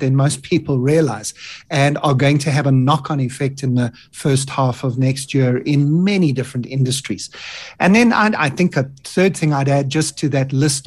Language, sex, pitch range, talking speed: English, male, 135-160 Hz, 200 wpm